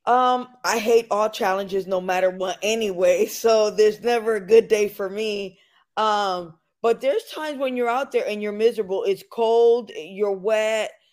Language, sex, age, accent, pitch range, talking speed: English, female, 20-39, American, 185-220 Hz, 175 wpm